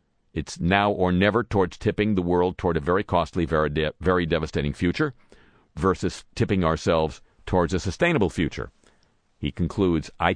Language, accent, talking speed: English, American, 150 wpm